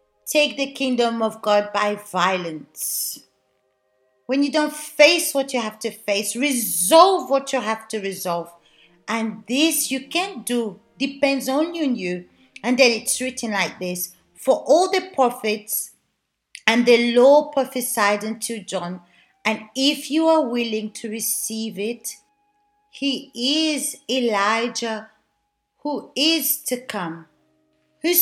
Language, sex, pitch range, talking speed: Portuguese, female, 220-295 Hz, 135 wpm